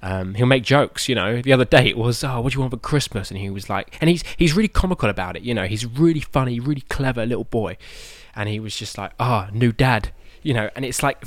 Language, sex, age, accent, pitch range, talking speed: English, male, 20-39, British, 100-125 Hz, 280 wpm